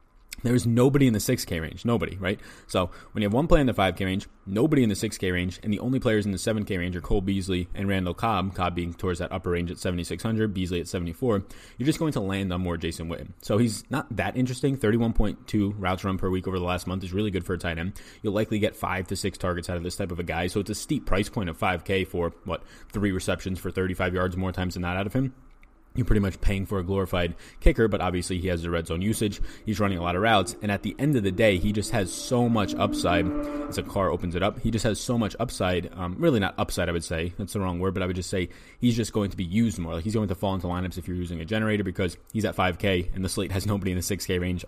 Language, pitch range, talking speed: English, 90-105 Hz, 280 wpm